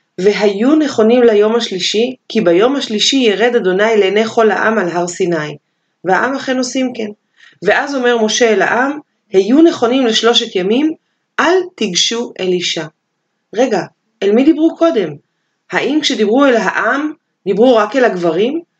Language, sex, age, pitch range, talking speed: Hebrew, female, 30-49, 195-255 Hz, 140 wpm